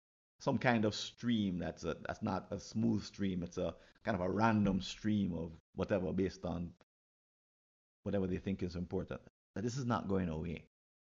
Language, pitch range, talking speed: English, 85-115 Hz, 180 wpm